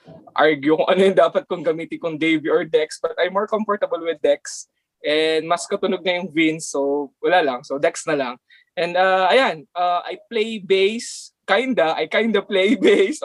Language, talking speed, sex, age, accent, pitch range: Filipino, 185 wpm, male, 20-39, native, 160-225 Hz